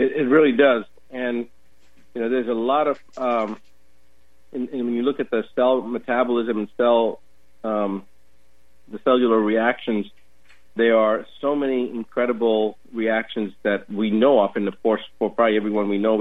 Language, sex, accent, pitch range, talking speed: English, male, American, 95-115 Hz, 165 wpm